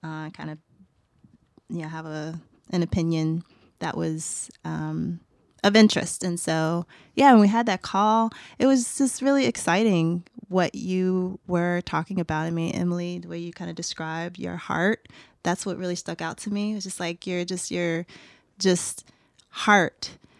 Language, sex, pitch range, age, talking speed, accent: English, female, 165-200 Hz, 20-39, 175 wpm, American